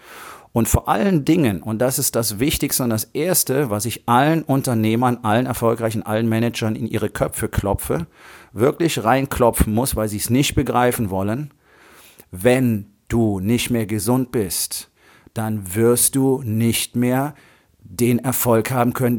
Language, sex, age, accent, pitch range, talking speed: German, male, 40-59, German, 110-135 Hz, 150 wpm